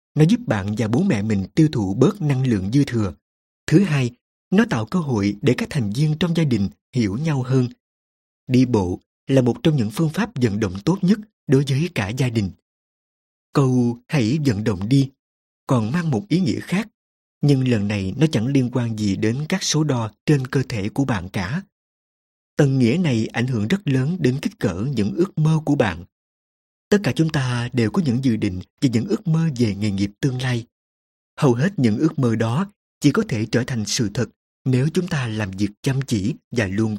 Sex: male